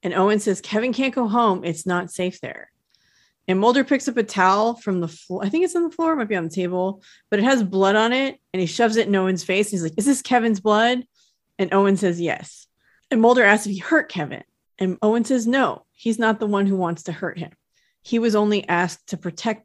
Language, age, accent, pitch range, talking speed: English, 30-49, American, 180-235 Hz, 250 wpm